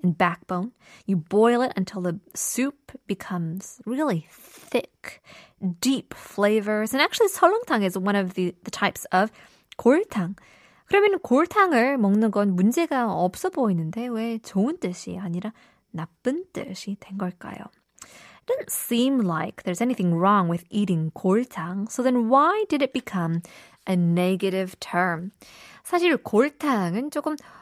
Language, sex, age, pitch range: Korean, female, 20-39, 185-265 Hz